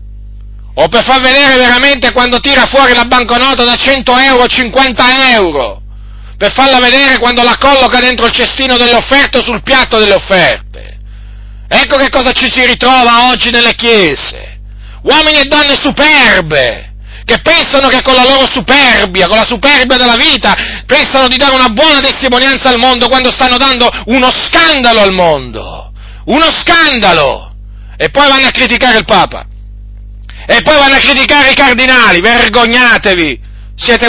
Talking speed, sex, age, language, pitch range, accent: 155 wpm, male, 40-59, Italian, 190-270 Hz, native